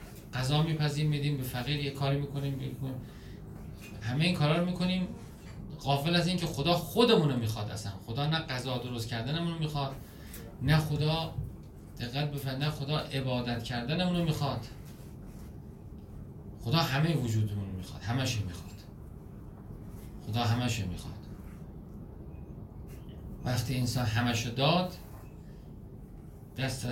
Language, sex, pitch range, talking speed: Persian, male, 110-150 Hz, 105 wpm